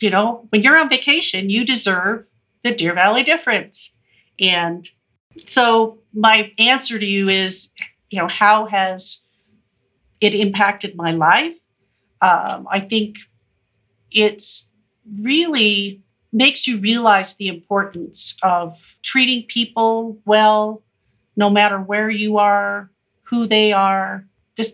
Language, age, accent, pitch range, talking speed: English, 50-69, American, 180-225 Hz, 120 wpm